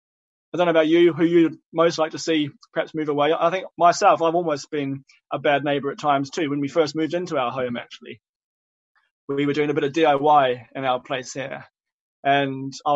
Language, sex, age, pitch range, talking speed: English, male, 20-39, 140-165 Hz, 215 wpm